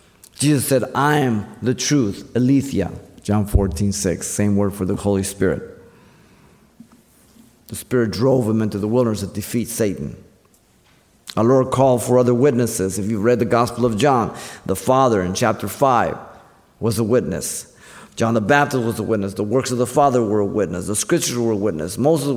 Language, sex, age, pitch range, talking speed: English, male, 50-69, 100-125 Hz, 180 wpm